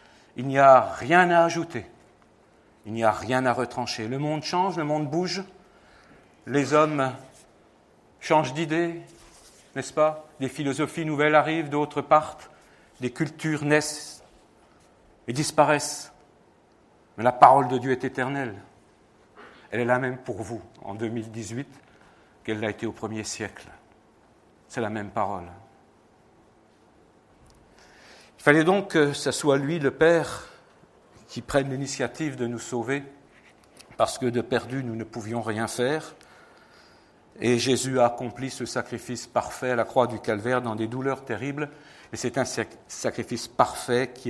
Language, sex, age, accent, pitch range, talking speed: French, male, 60-79, French, 120-155 Hz, 145 wpm